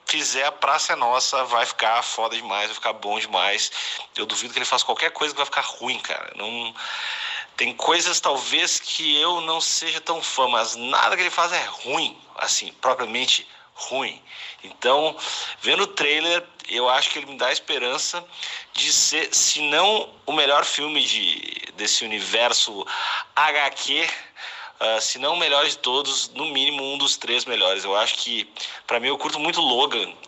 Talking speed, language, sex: 180 wpm, Portuguese, male